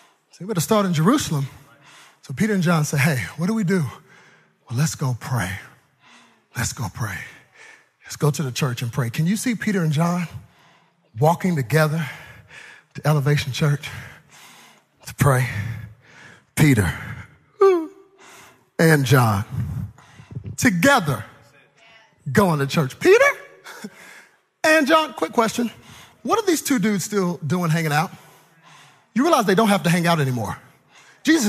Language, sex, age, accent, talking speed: English, male, 40-59, American, 145 wpm